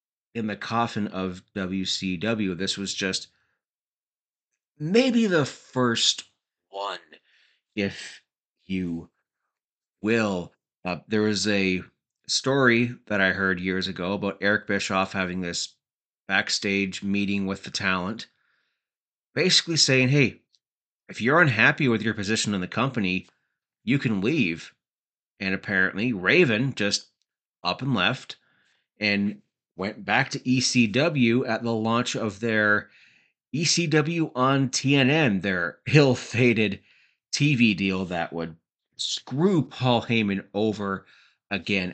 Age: 30-49